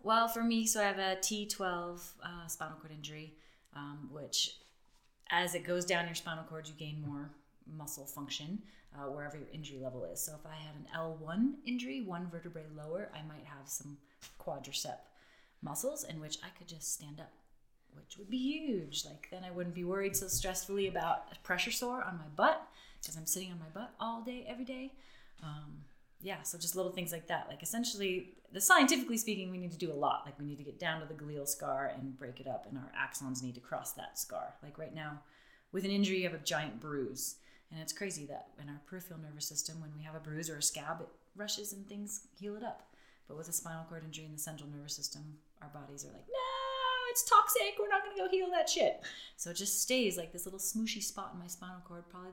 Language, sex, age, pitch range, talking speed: English, female, 30-49, 150-200 Hz, 230 wpm